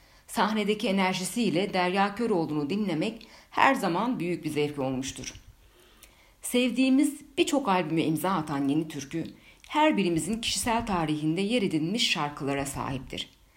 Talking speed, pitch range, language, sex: 115 wpm, 140-215 Hz, Turkish, female